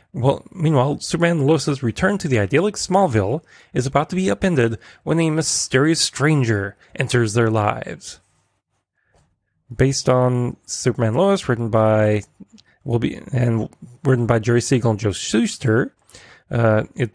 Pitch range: 115-155 Hz